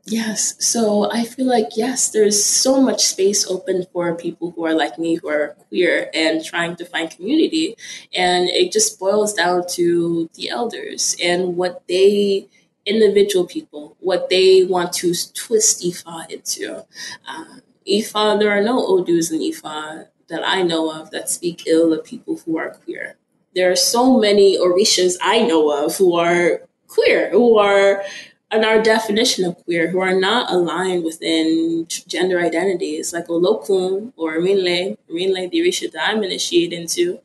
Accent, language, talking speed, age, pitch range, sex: American, English, 165 wpm, 20-39, 175-260 Hz, female